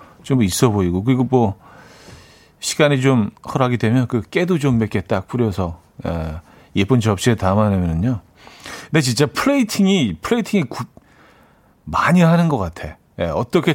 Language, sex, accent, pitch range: Korean, male, native, 105-145 Hz